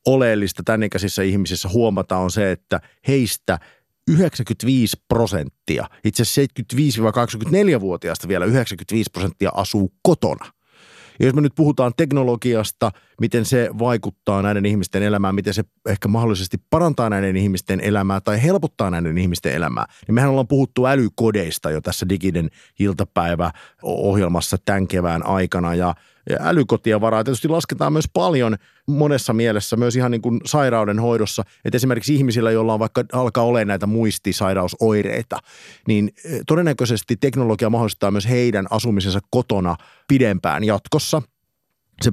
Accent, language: native, Finnish